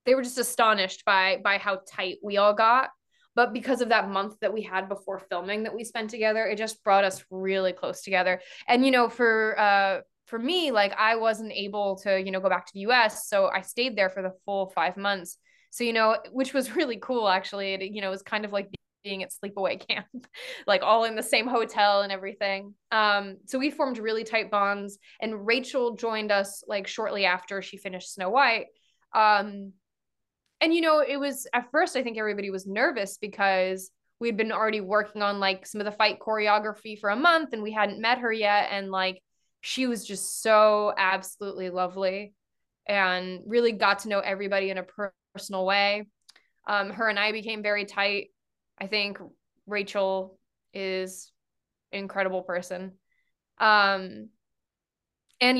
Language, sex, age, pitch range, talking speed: English, female, 20-39, 195-230 Hz, 190 wpm